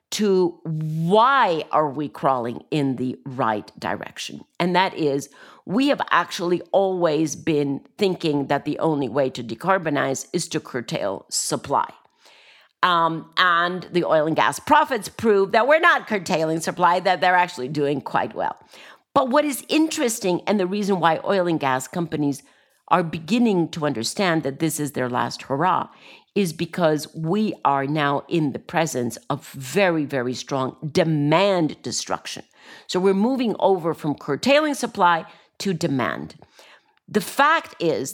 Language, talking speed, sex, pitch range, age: English, 150 wpm, female, 145-195 Hz, 50-69